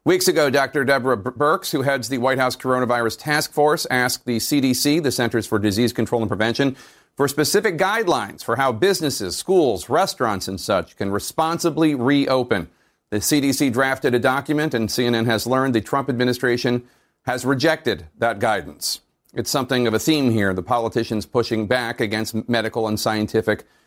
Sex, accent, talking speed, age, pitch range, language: male, American, 165 wpm, 40-59, 115-140 Hz, English